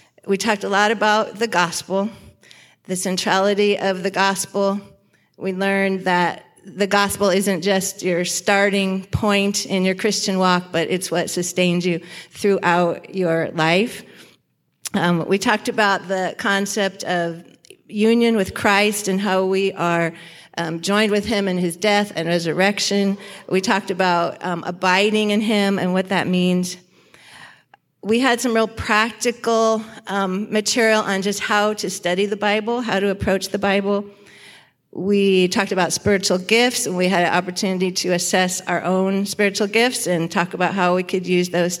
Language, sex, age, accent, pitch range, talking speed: English, female, 40-59, American, 180-210 Hz, 160 wpm